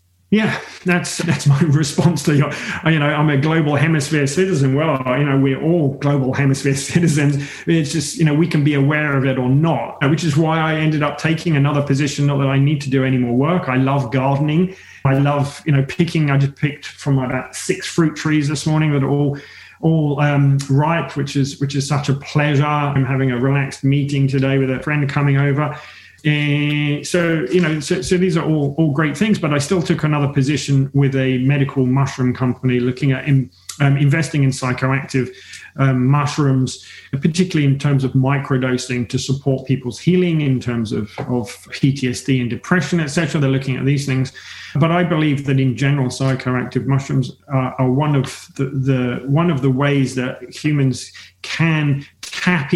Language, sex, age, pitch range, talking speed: English, male, 30-49, 135-155 Hz, 195 wpm